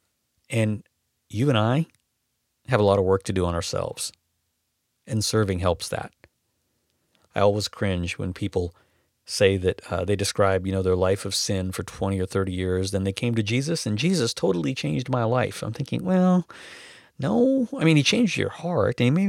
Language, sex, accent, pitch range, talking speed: English, male, American, 95-125 Hz, 185 wpm